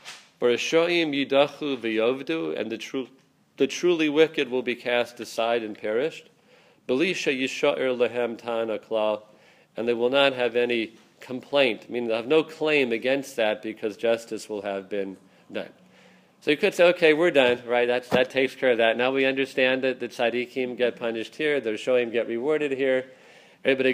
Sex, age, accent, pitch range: male, 40-59, American, 120-145 Hz